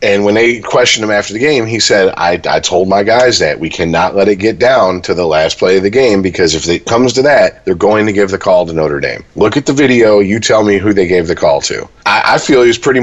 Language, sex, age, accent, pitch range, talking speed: English, male, 40-59, American, 95-120 Hz, 290 wpm